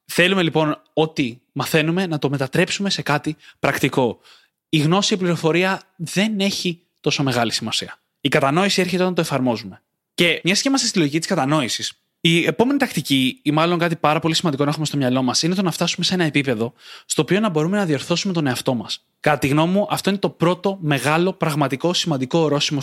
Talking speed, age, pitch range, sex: 195 wpm, 20-39, 145-190 Hz, male